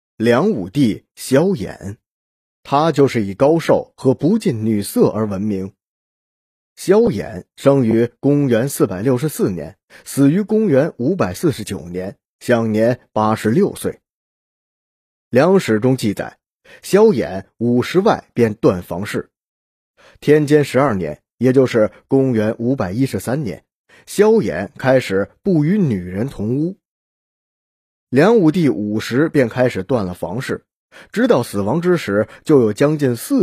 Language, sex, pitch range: Chinese, male, 105-150 Hz